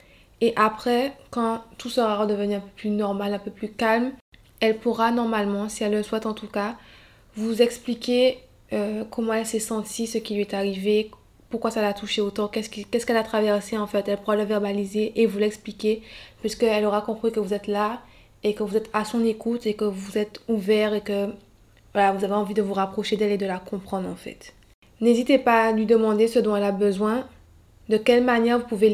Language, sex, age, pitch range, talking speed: French, female, 20-39, 210-230 Hz, 220 wpm